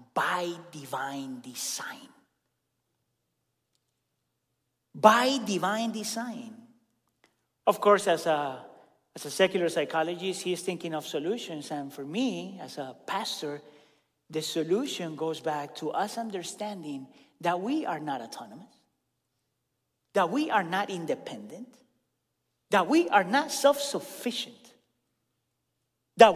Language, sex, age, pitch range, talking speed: English, male, 40-59, 170-255 Hz, 110 wpm